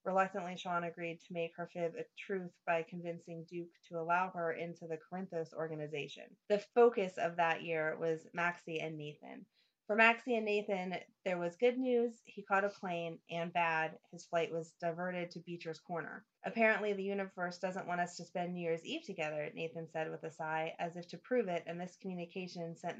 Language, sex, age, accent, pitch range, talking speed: English, female, 30-49, American, 165-195 Hz, 195 wpm